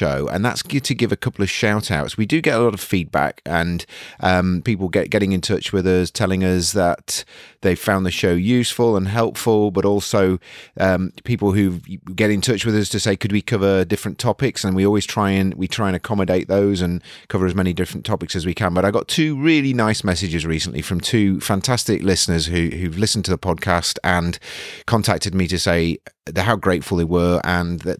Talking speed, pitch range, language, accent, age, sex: 220 wpm, 85-105 Hz, English, British, 30-49, male